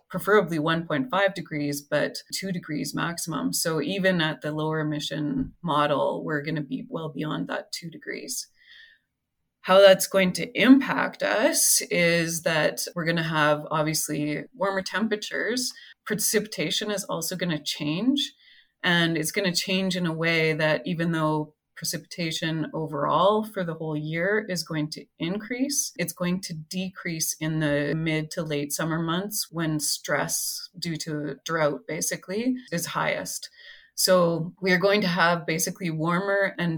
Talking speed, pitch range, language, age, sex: 150 wpm, 155-195 Hz, English, 20-39, female